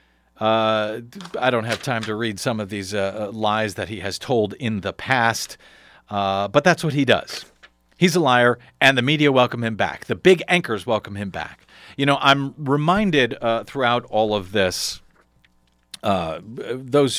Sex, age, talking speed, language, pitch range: male, 40-59, 180 wpm, English, 100-120 Hz